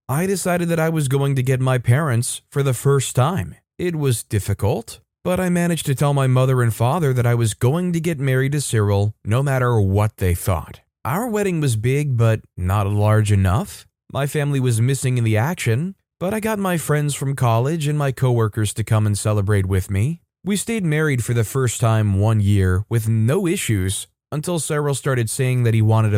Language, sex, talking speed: English, male, 210 wpm